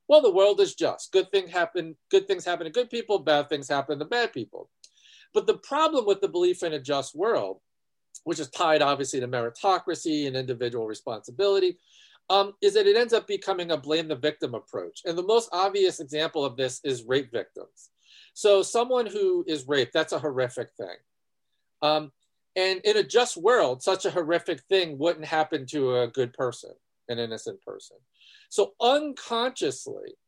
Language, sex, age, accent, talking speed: English, male, 50-69, American, 175 wpm